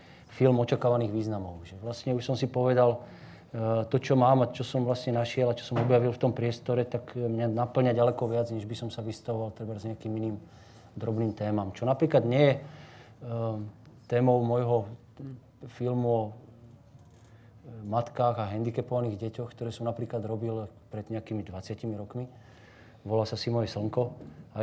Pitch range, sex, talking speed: 110-125 Hz, male, 160 wpm